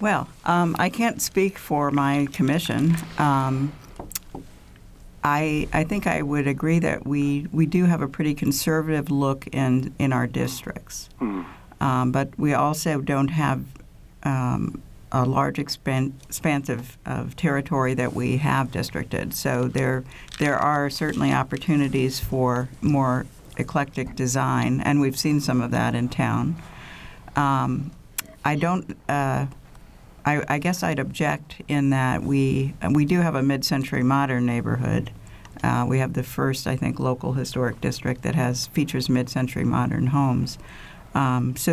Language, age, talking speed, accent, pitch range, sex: English, 60-79, 145 wpm, American, 130-150 Hz, female